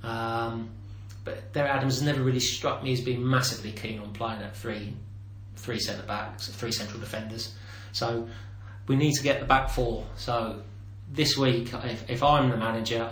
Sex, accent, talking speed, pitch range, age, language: male, British, 180 wpm, 105-120 Hz, 30-49, English